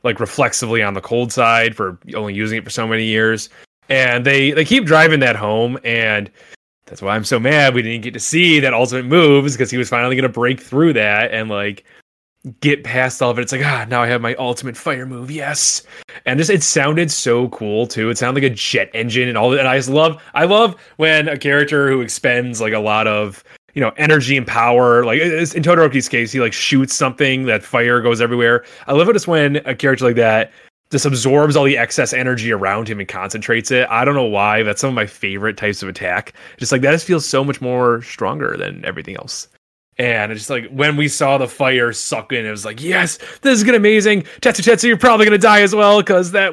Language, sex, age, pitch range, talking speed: English, male, 20-39, 115-150 Hz, 235 wpm